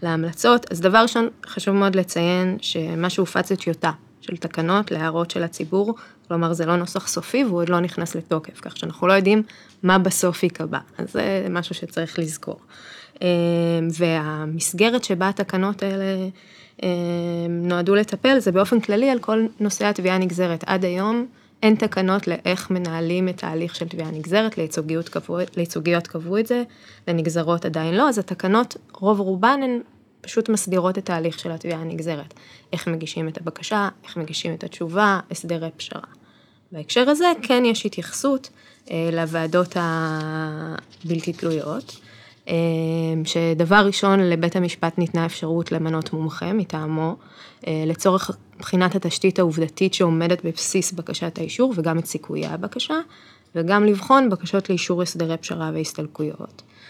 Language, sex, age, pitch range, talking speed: Hebrew, female, 20-39, 165-200 Hz, 130 wpm